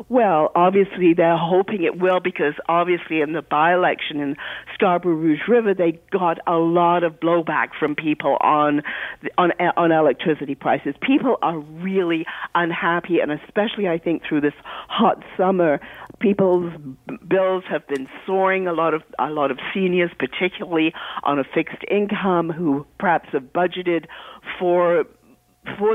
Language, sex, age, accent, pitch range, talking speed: English, female, 50-69, American, 165-195 Hz, 145 wpm